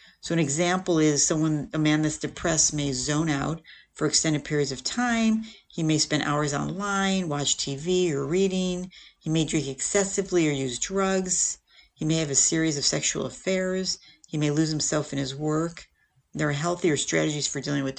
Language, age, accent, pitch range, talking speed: English, 50-69, American, 145-180 Hz, 185 wpm